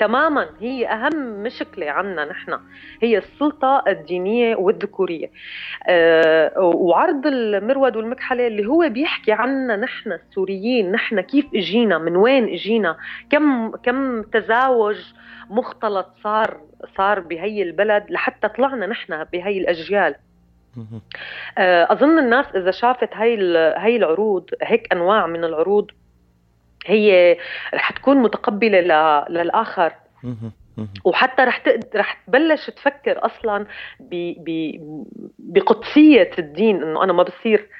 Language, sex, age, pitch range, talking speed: Arabic, female, 30-49, 180-260 Hz, 110 wpm